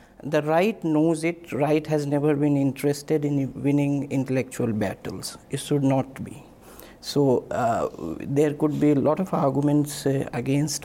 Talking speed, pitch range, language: 155 wpm, 135-160 Hz, English